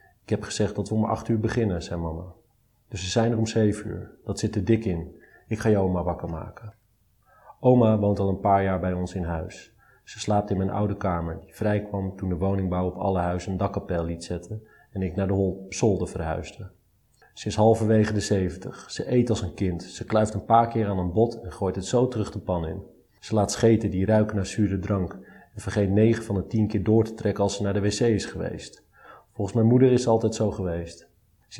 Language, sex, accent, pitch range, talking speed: Dutch, male, Dutch, 95-110 Hz, 240 wpm